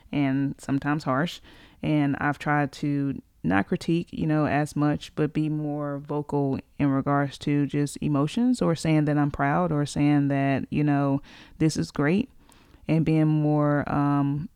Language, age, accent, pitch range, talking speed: English, 20-39, American, 145-160 Hz, 160 wpm